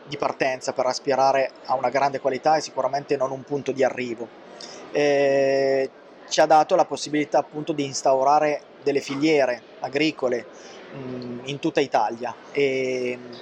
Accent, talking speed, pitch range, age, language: native, 145 wpm, 130-145 Hz, 20-39, Italian